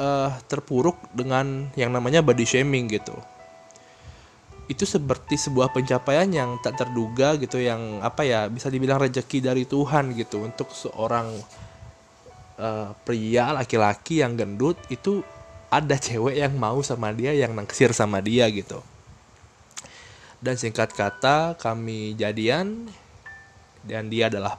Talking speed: 125 wpm